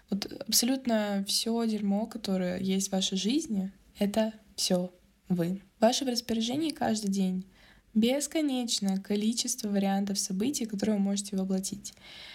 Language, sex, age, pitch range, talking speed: Russian, female, 10-29, 195-230 Hz, 120 wpm